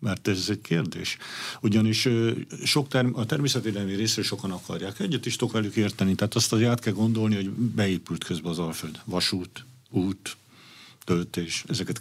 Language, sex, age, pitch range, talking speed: Hungarian, male, 50-69, 95-120 Hz, 160 wpm